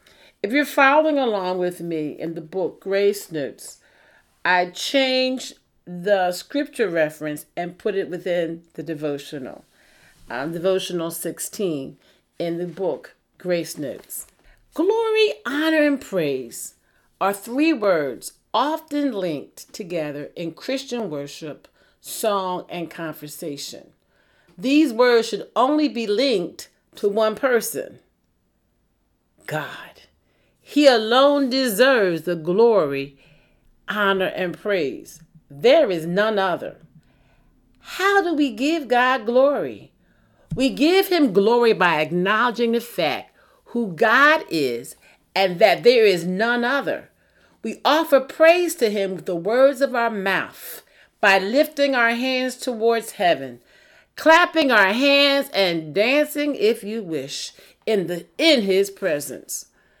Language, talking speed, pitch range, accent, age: English, 120 wpm, 175-275 Hz, American, 40-59